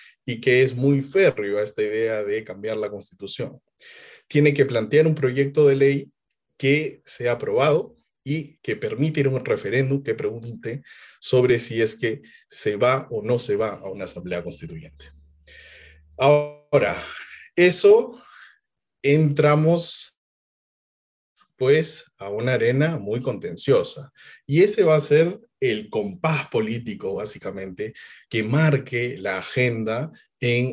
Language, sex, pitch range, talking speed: Spanish, male, 120-170 Hz, 135 wpm